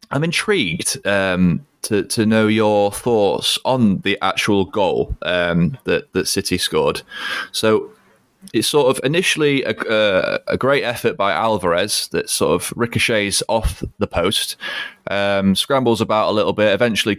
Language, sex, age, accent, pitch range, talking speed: English, male, 20-39, British, 95-115 Hz, 150 wpm